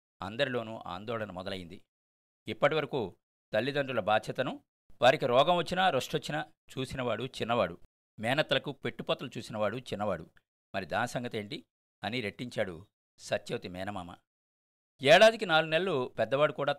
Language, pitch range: Telugu, 95-145 Hz